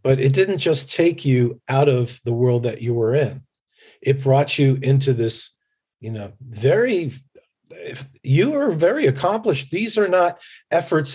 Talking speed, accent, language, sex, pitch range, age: 165 wpm, American, English, male, 120-140 Hz, 40-59